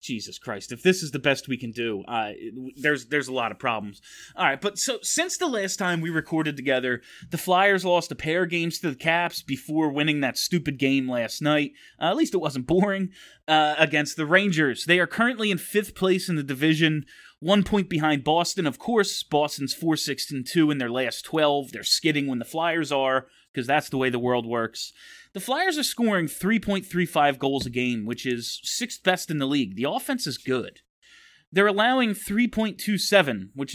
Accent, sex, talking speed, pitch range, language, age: American, male, 200 wpm, 135-200 Hz, English, 20-39